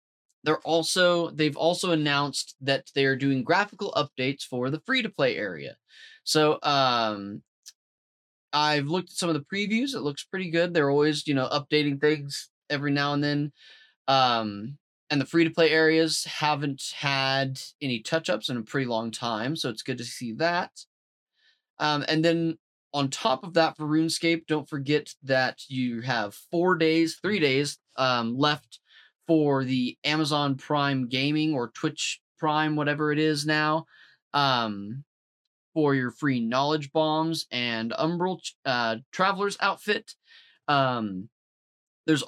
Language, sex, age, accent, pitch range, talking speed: English, male, 20-39, American, 125-160 Hz, 155 wpm